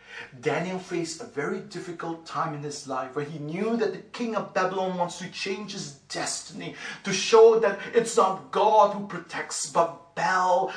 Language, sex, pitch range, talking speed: English, male, 125-185 Hz, 180 wpm